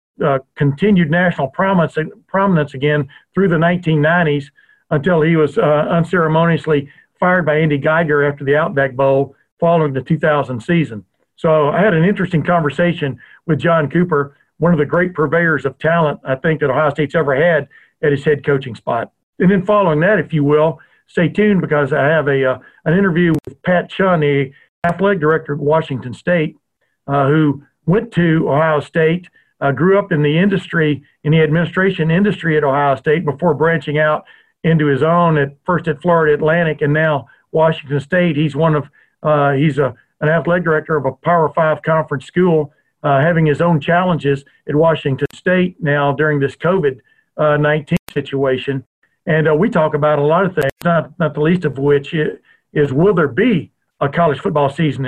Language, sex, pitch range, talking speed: English, male, 145-175 Hz, 180 wpm